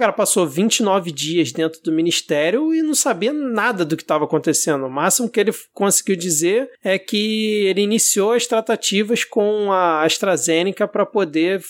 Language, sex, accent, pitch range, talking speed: Portuguese, male, Brazilian, 170-225 Hz, 170 wpm